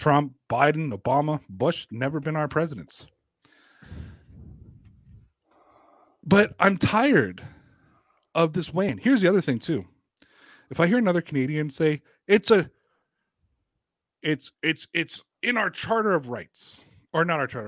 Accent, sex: American, male